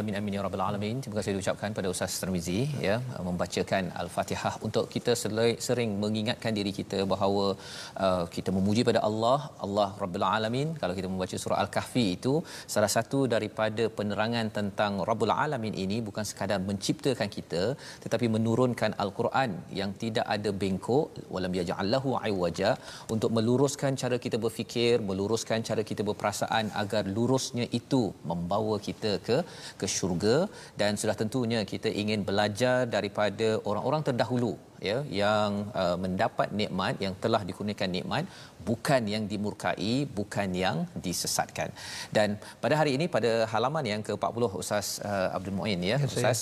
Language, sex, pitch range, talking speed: Malayalam, male, 100-120 Hz, 145 wpm